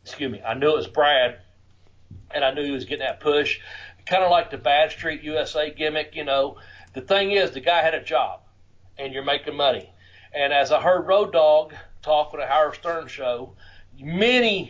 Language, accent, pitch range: English, American, 125-170 Hz